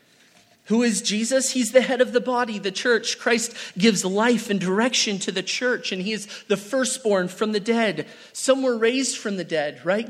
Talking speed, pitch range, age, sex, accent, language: 200 wpm, 205-255 Hz, 30-49, male, American, English